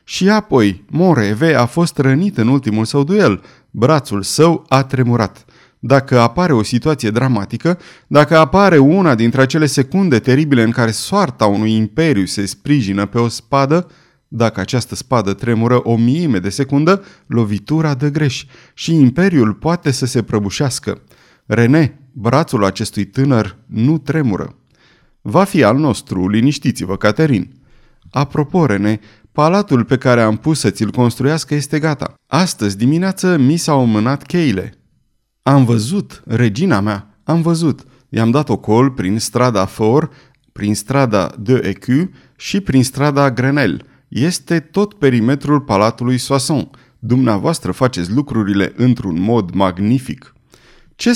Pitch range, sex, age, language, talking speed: 110-150 Hz, male, 30-49, Romanian, 135 wpm